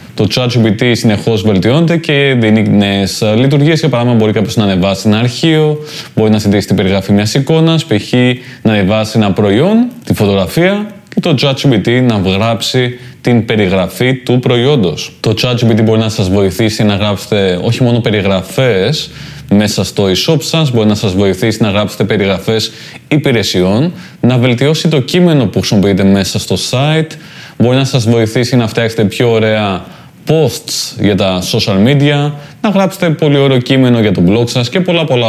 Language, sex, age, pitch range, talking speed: Greek, male, 20-39, 105-140 Hz, 165 wpm